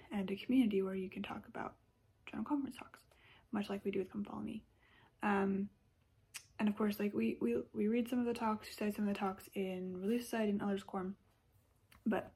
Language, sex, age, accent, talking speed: English, female, 20-39, American, 220 wpm